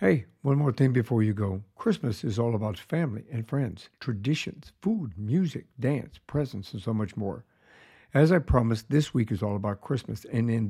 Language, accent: English, American